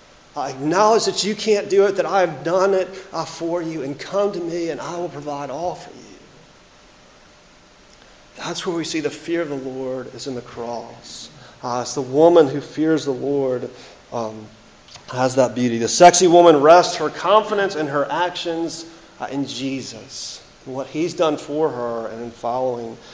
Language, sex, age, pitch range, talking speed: English, male, 40-59, 125-175 Hz, 180 wpm